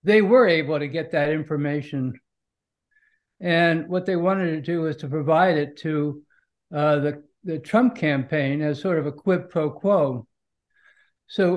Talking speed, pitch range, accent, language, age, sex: 160 wpm, 145-180 Hz, American, English, 60-79, male